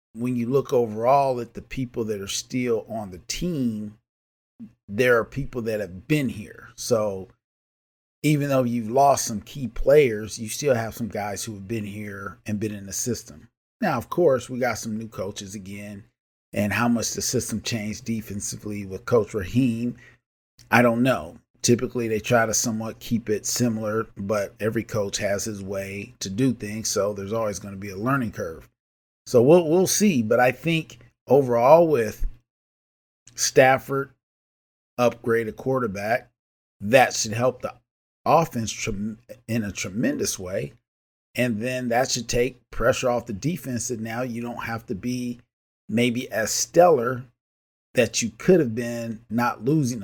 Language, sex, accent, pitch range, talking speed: English, male, American, 105-125 Hz, 165 wpm